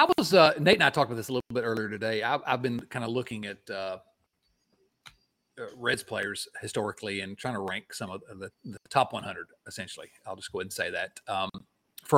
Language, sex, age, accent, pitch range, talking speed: English, male, 40-59, American, 120-180 Hz, 220 wpm